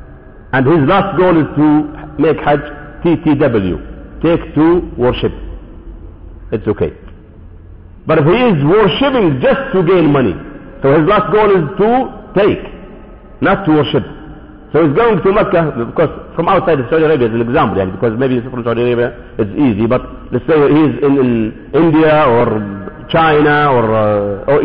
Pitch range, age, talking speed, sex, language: 115-175 Hz, 50-69, 155 wpm, male, English